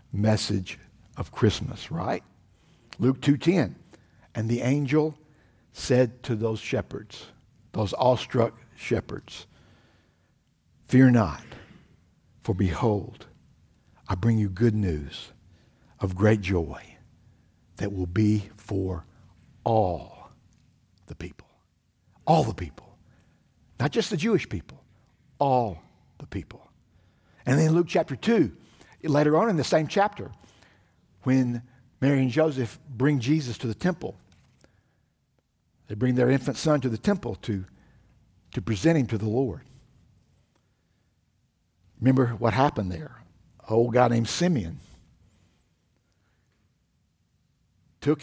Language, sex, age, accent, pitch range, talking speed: English, male, 60-79, American, 100-130 Hz, 115 wpm